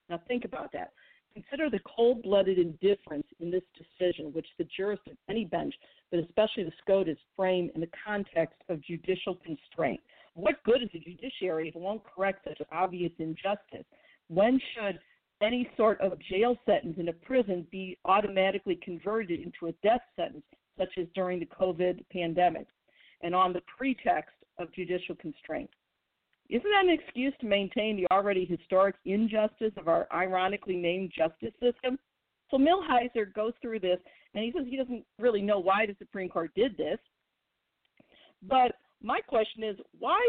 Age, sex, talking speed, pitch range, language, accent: 50-69, female, 160 wpm, 180-245 Hz, English, American